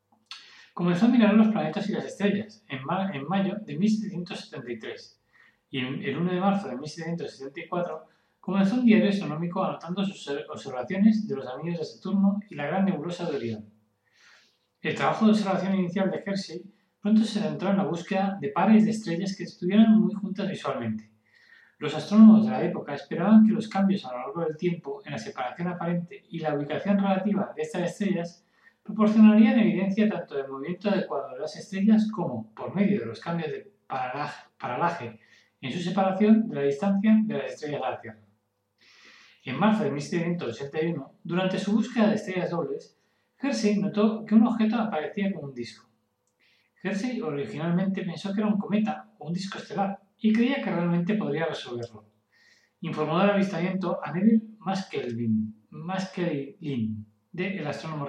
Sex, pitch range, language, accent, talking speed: male, 155-210 Hz, Spanish, Spanish, 165 wpm